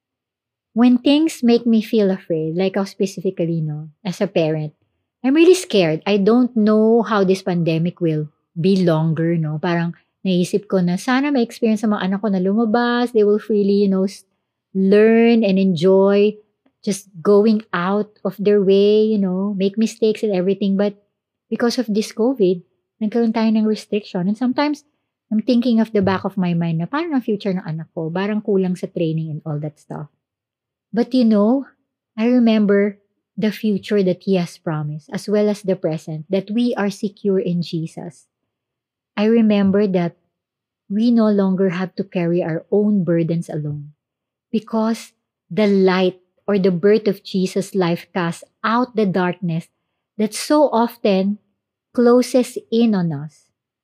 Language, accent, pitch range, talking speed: English, Filipino, 170-220 Hz, 165 wpm